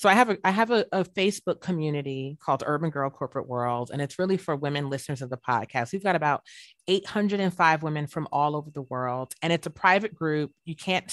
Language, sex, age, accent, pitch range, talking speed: English, female, 30-49, American, 155-195 Hz, 220 wpm